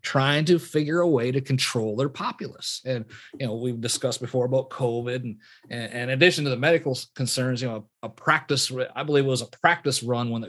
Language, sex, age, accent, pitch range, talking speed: English, male, 40-59, American, 115-140 Hz, 215 wpm